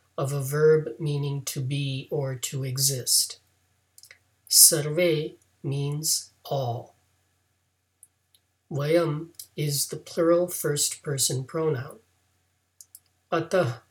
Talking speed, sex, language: 85 wpm, male, English